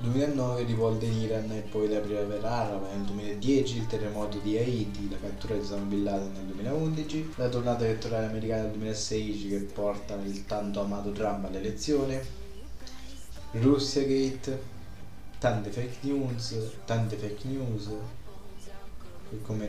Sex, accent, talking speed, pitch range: male, native, 130 wpm, 105-115 Hz